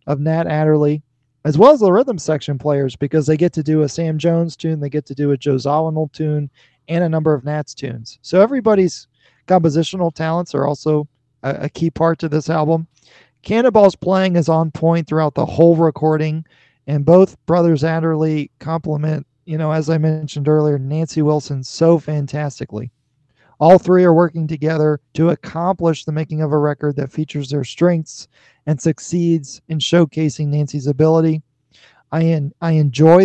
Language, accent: English, American